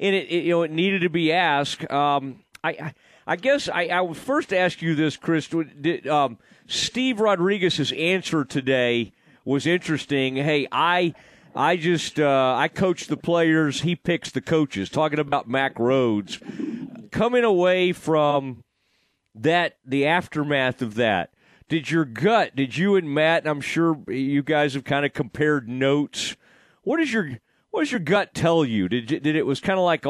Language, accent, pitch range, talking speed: English, American, 140-170 Hz, 175 wpm